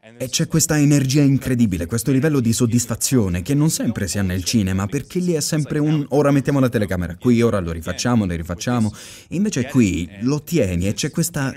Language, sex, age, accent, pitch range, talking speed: Italian, male, 20-39, native, 105-140 Hz, 195 wpm